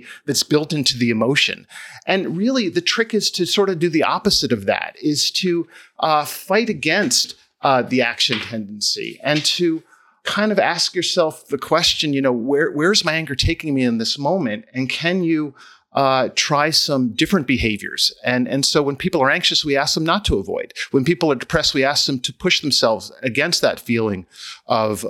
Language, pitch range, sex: English, 120-165 Hz, male